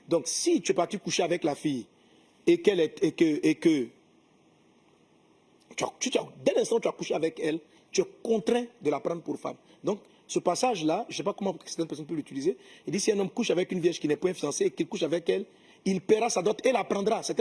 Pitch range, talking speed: 175-285 Hz, 225 wpm